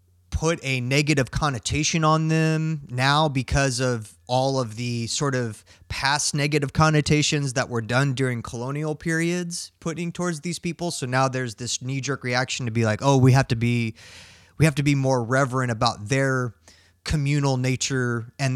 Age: 20-39